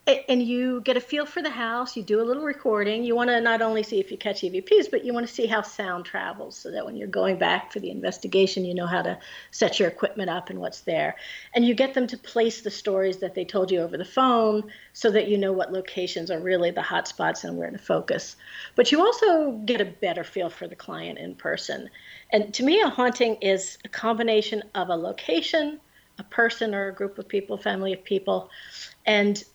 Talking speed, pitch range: 235 wpm, 190-250 Hz